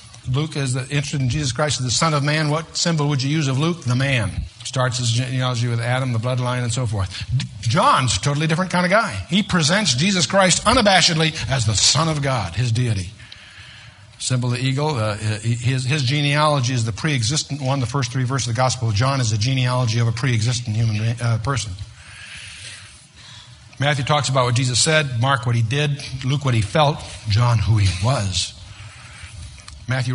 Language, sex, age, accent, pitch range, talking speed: English, male, 60-79, American, 110-140 Hz, 195 wpm